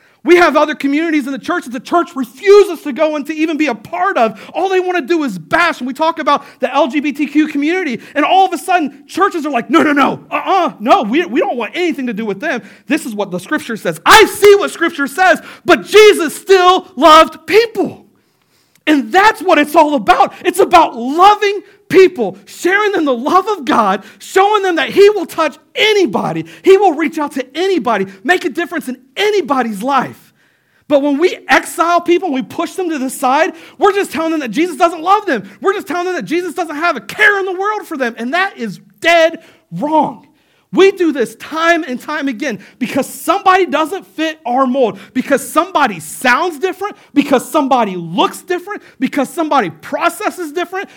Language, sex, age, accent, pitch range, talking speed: English, male, 50-69, American, 265-360 Hz, 205 wpm